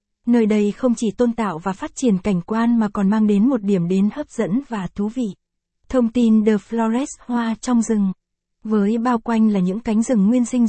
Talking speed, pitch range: 220 wpm, 205-235 Hz